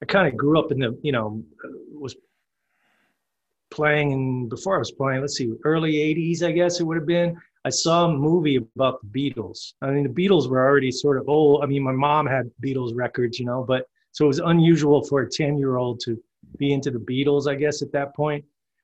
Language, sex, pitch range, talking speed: English, male, 125-150 Hz, 220 wpm